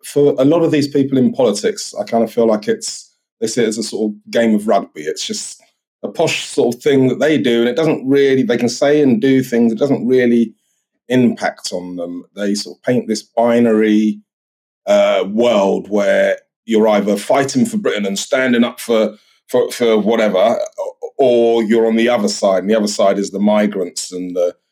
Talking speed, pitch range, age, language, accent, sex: 205 wpm, 105-135 Hz, 30-49, English, British, male